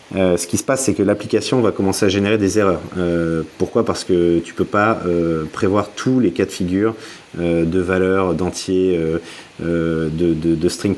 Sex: male